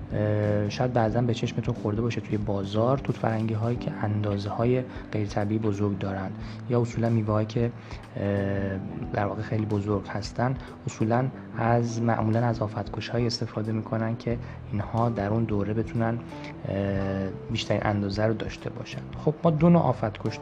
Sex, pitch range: male, 105-120 Hz